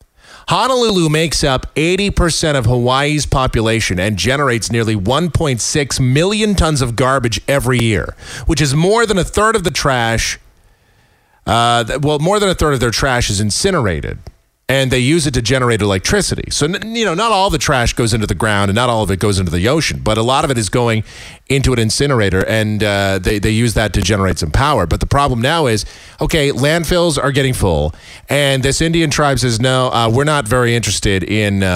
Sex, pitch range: male, 115-160 Hz